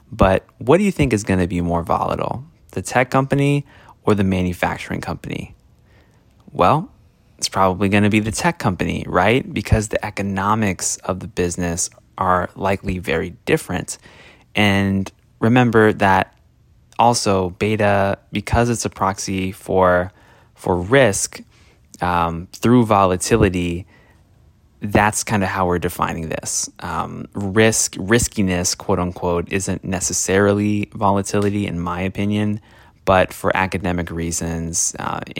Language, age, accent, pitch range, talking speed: English, 20-39, American, 90-105 Hz, 130 wpm